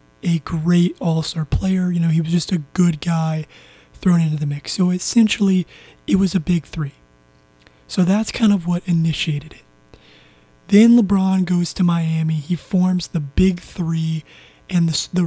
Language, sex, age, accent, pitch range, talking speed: English, male, 20-39, American, 150-185 Hz, 170 wpm